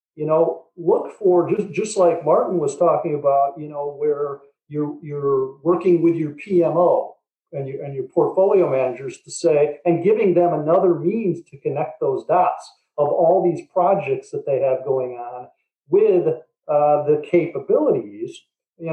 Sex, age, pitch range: male, 50-69, 145-180 Hz